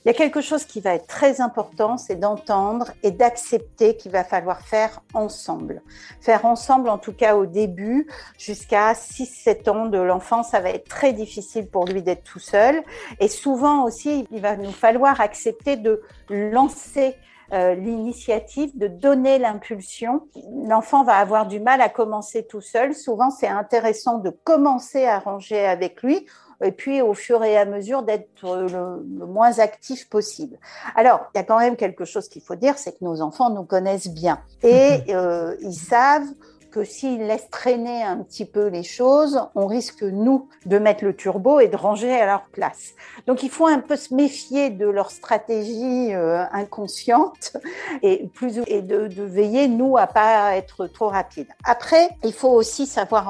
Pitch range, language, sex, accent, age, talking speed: 200-255 Hz, French, female, French, 50-69, 180 wpm